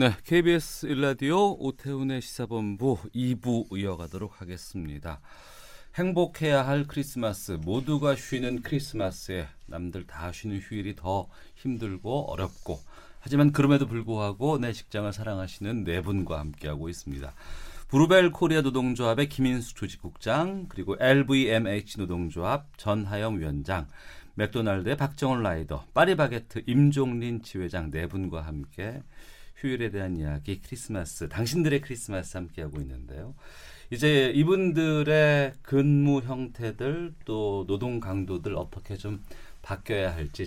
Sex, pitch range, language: male, 90-140 Hz, Korean